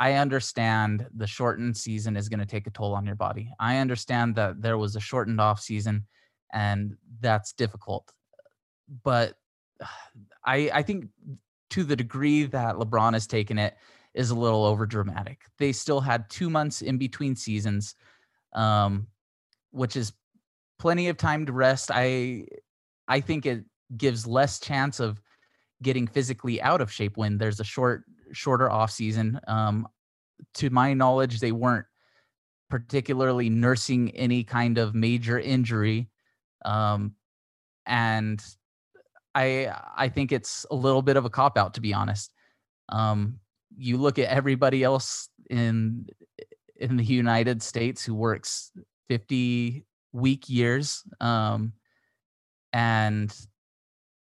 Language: English